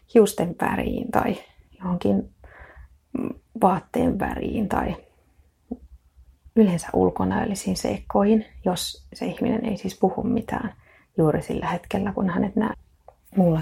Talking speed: 105 wpm